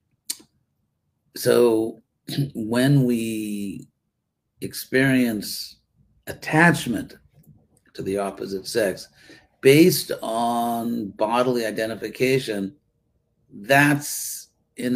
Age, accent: 50-69, American